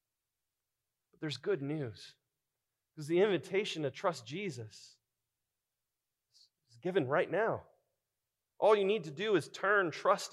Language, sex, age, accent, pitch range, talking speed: English, male, 30-49, American, 125-180 Hz, 120 wpm